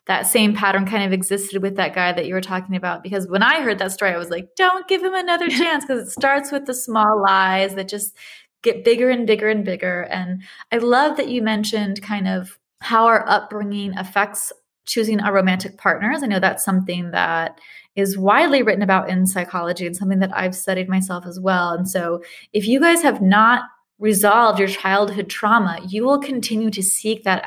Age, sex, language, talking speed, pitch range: 20-39, female, English, 210 wpm, 185-220 Hz